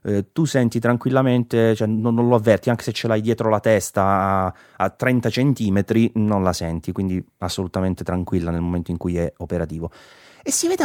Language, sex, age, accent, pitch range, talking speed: Italian, male, 30-49, native, 95-115 Hz, 190 wpm